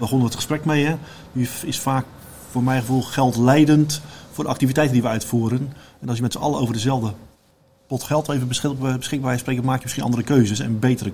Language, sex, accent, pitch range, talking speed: Dutch, male, Dutch, 115-130 Hz, 215 wpm